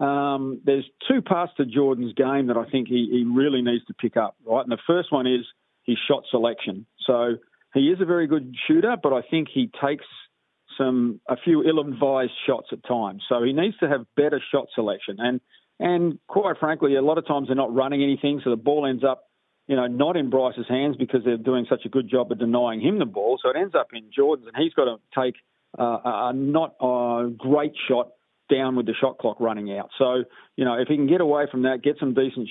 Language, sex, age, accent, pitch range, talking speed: English, male, 40-59, Australian, 120-145 Hz, 230 wpm